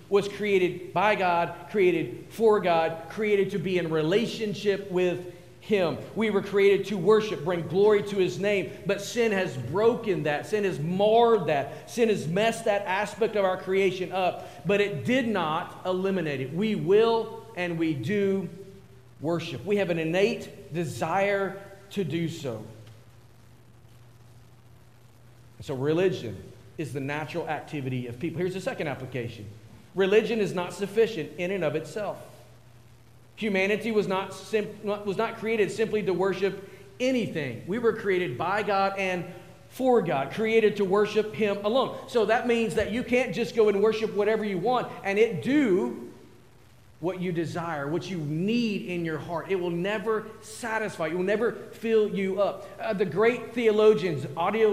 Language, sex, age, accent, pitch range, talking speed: English, male, 40-59, American, 165-210 Hz, 160 wpm